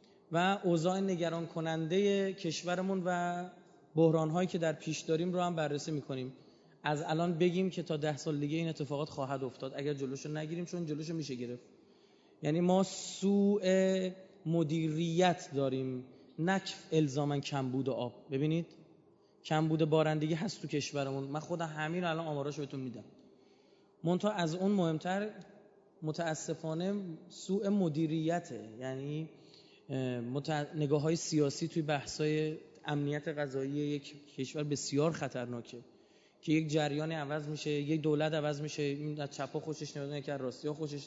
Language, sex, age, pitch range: Persian, male, 30-49, 145-175 Hz